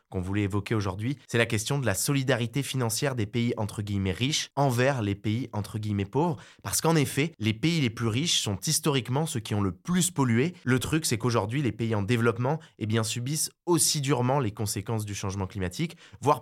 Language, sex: French, male